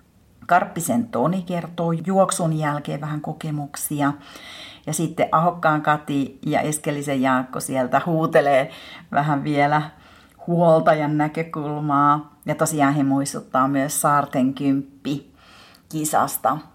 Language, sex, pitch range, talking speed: Finnish, female, 140-170 Hz, 100 wpm